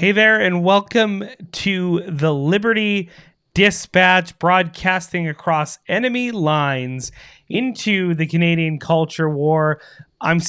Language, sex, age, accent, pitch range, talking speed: English, male, 30-49, American, 150-180 Hz, 105 wpm